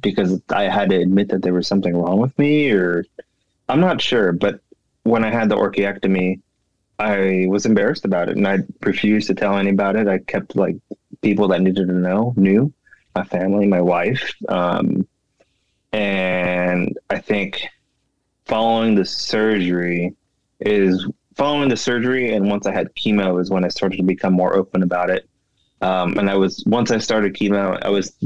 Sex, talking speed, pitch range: male, 180 wpm, 95-105 Hz